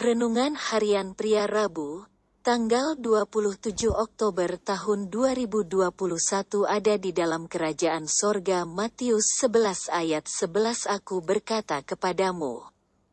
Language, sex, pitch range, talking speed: Indonesian, female, 185-225 Hz, 90 wpm